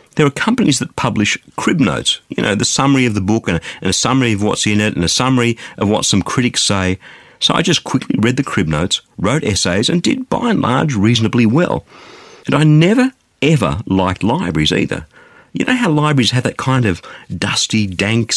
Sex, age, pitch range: male, 50-69, 100-150 Hz